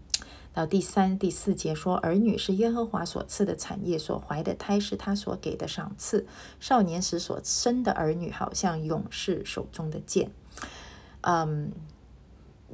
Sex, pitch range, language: female, 150-190 Hz, Chinese